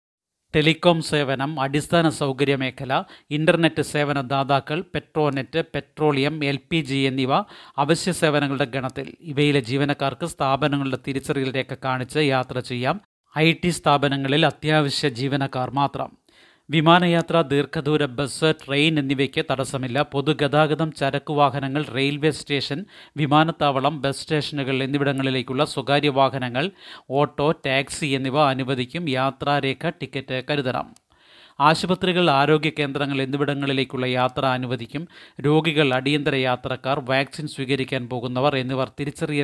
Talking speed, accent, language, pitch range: 100 wpm, native, Malayalam, 135-155 Hz